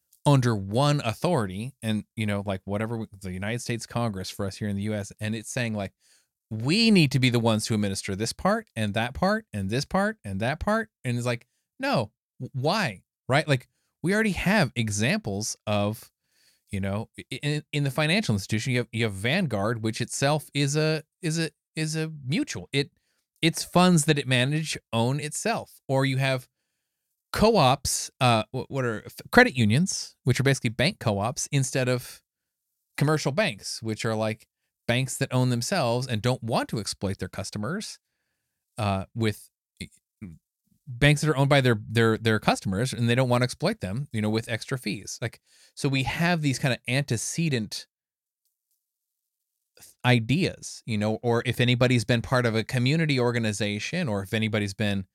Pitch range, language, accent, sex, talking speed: 110-145 Hz, English, American, male, 175 wpm